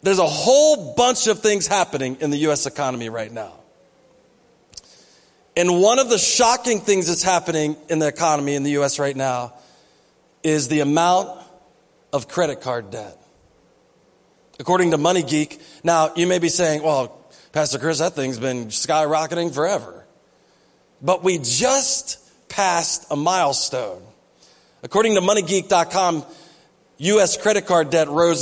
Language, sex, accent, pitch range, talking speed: English, male, American, 140-180 Hz, 140 wpm